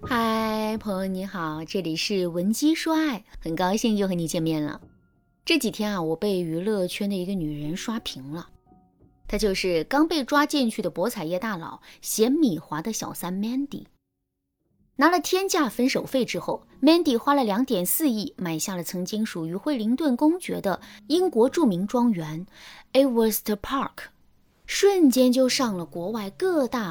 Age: 20-39